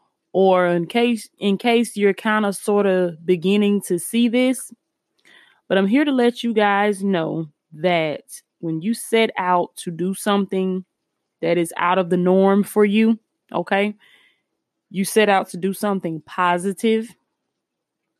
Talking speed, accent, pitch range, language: 150 wpm, American, 180-220 Hz, English